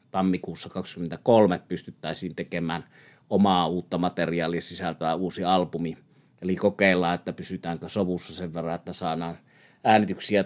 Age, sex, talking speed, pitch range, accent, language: 30-49, male, 115 wpm, 90-105 Hz, native, Finnish